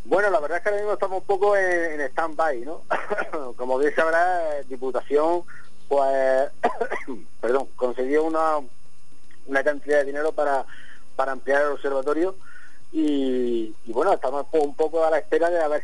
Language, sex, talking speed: Spanish, male, 175 wpm